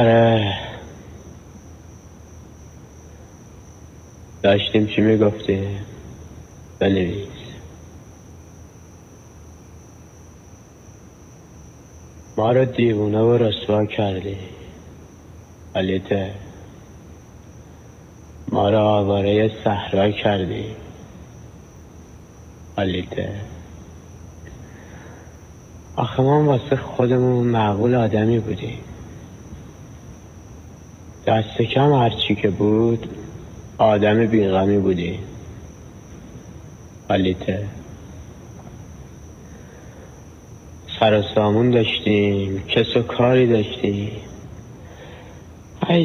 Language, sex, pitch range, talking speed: Persian, male, 95-115 Hz, 50 wpm